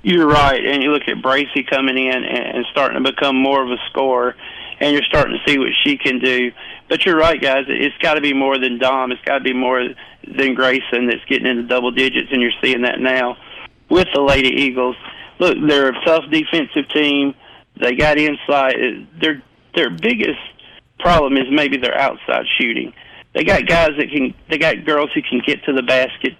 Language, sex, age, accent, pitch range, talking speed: English, male, 40-59, American, 125-145 Hz, 205 wpm